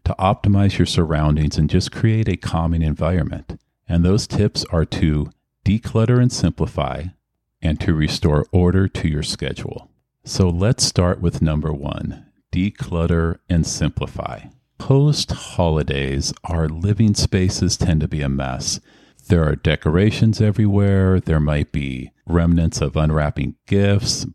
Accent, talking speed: American, 135 wpm